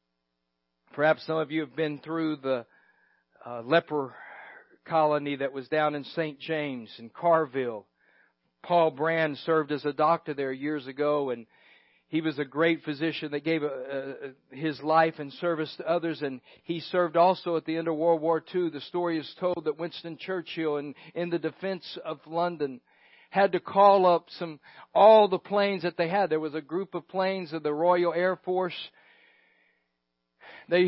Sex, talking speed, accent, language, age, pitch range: male, 175 wpm, American, English, 50-69, 150-185 Hz